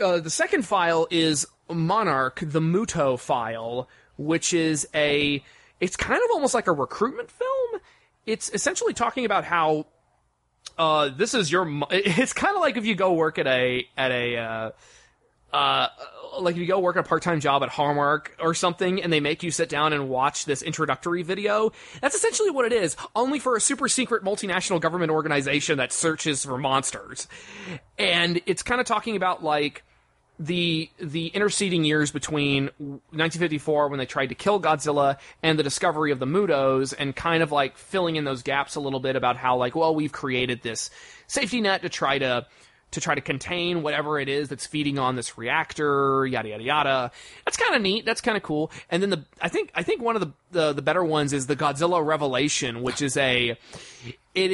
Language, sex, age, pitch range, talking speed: English, male, 30-49, 140-185 Hz, 195 wpm